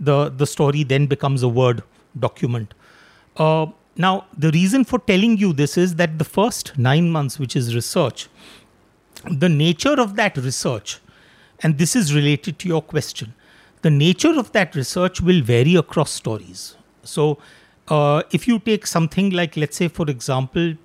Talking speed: 165 wpm